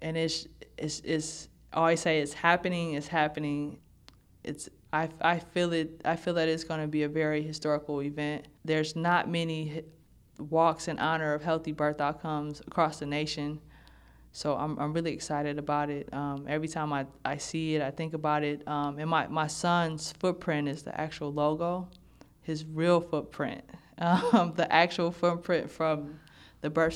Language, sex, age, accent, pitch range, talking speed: English, female, 20-39, American, 150-170 Hz, 175 wpm